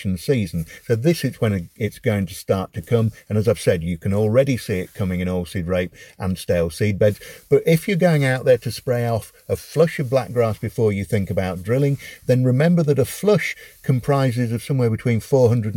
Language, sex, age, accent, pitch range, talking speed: English, male, 50-69, British, 95-130 Hz, 215 wpm